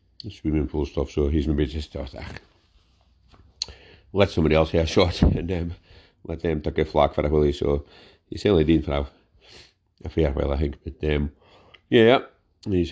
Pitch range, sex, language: 80-95 Hz, male, English